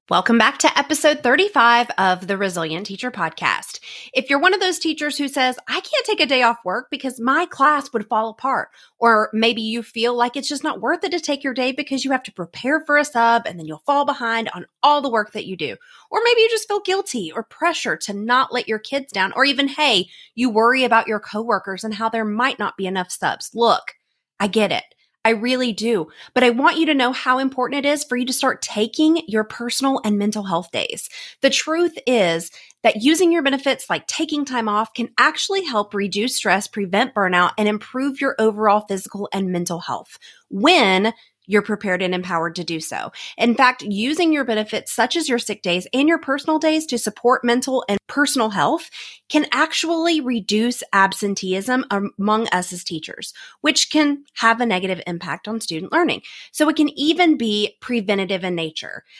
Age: 30-49